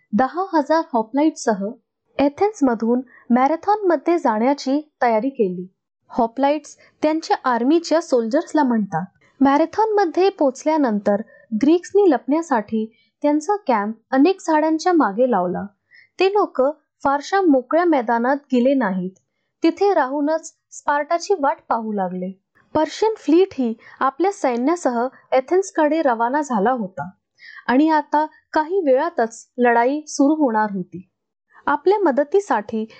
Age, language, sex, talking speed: 20-39, Marathi, female, 85 wpm